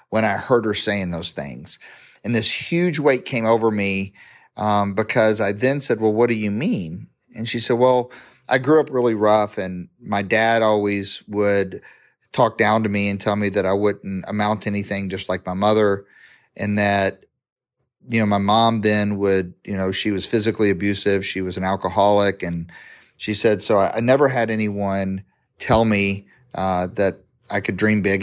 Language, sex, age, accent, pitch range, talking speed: English, male, 40-59, American, 100-110 Hz, 190 wpm